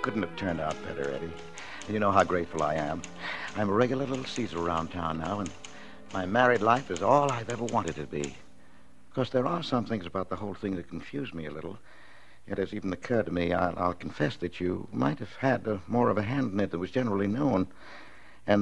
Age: 60-79